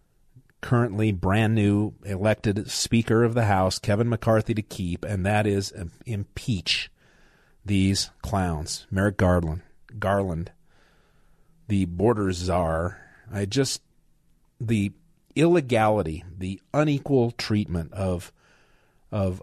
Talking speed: 100 wpm